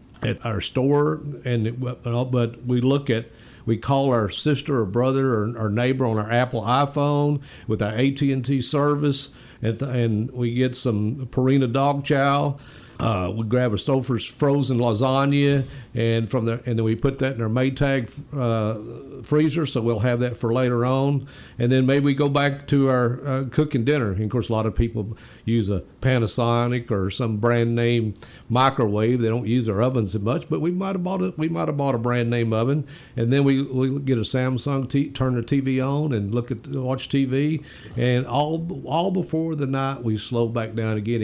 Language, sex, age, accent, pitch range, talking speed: English, male, 50-69, American, 115-140 Hz, 200 wpm